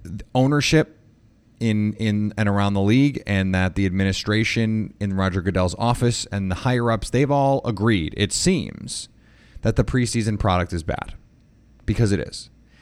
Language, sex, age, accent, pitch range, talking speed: English, male, 30-49, American, 100-120 Hz, 155 wpm